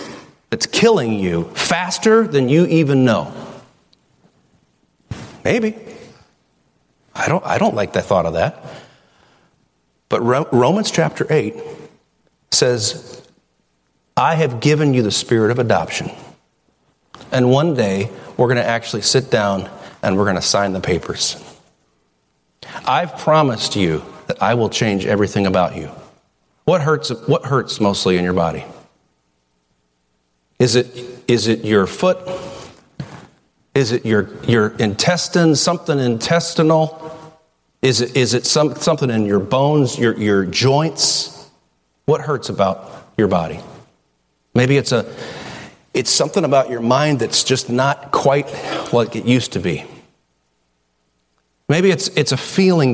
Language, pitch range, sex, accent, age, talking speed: English, 95-150 Hz, male, American, 40-59, 135 wpm